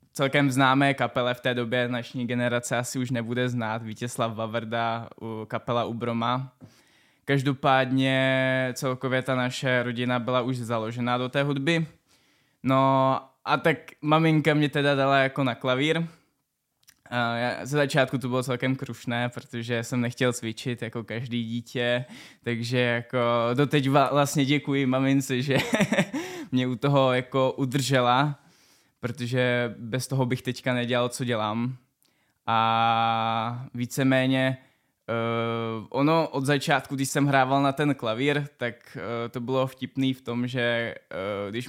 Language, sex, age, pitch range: Czech, male, 20-39, 120-135 Hz